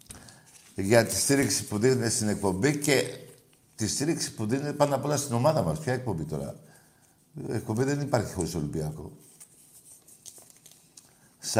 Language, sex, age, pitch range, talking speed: Greek, male, 60-79, 100-130 Hz, 145 wpm